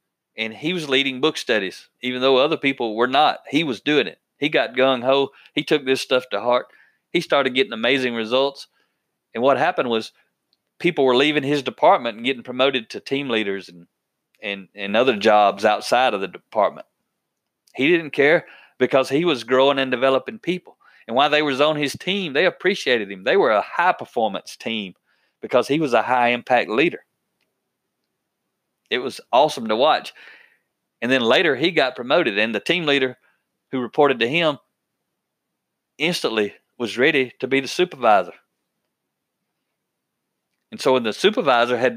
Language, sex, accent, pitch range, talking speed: English, male, American, 120-140 Hz, 165 wpm